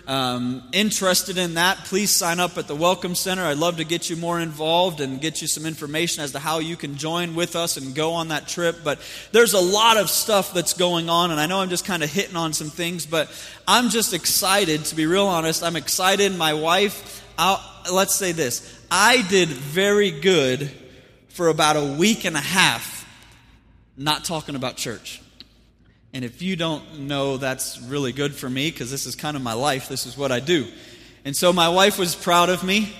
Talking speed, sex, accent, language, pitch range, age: 210 wpm, male, American, English, 150-190 Hz, 20-39